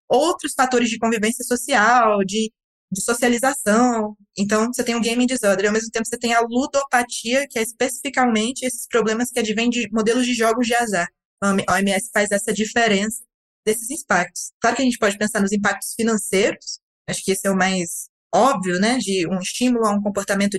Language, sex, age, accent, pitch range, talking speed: Portuguese, female, 20-39, Brazilian, 200-245 Hz, 190 wpm